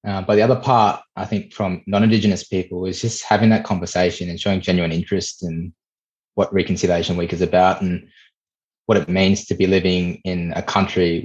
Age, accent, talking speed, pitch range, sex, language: 20-39, Australian, 185 wpm, 90-105 Hz, male, English